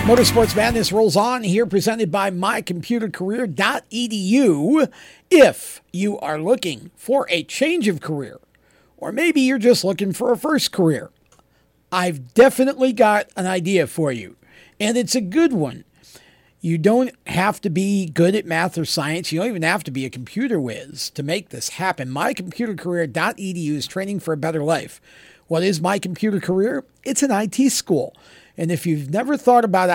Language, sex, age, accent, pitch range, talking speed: English, male, 50-69, American, 170-235 Hz, 160 wpm